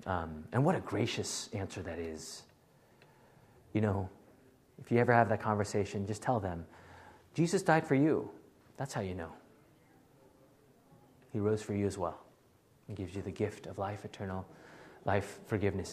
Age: 30-49